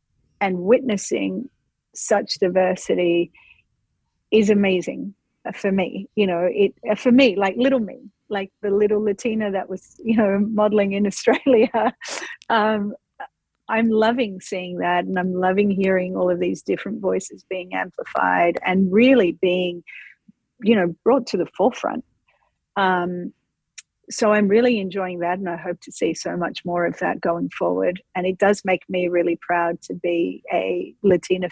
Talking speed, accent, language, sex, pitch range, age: 155 wpm, Australian, English, female, 180-210 Hz, 40-59